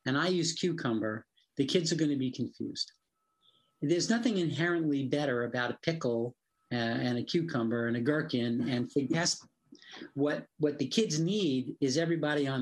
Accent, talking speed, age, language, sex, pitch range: American, 160 wpm, 50-69, English, male, 135-210 Hz